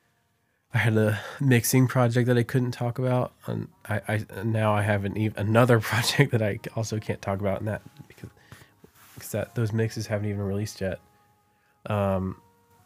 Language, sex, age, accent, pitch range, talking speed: English, male, 20-39, American, 100-115 Hz, 175 wpm